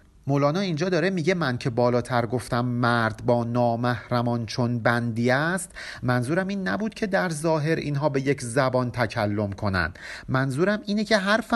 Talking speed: 155 wpm